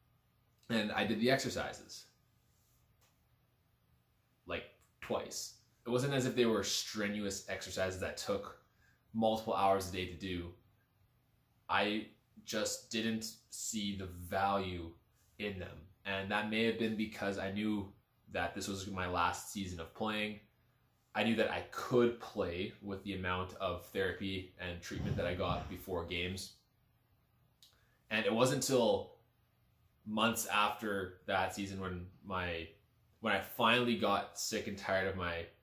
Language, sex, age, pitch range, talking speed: English, male, 20-39, 95-115 Hz, 140 wpm